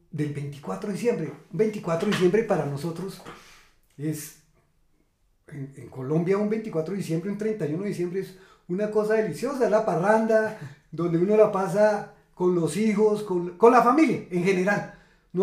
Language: English